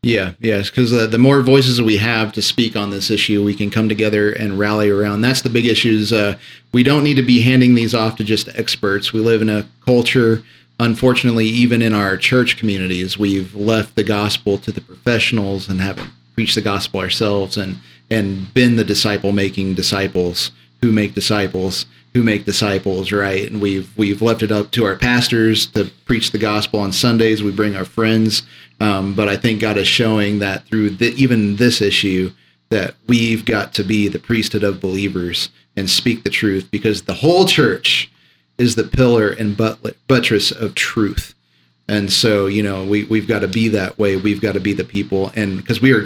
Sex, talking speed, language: male, 200 wpm, English